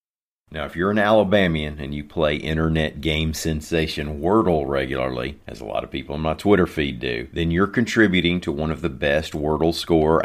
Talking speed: 195 wpm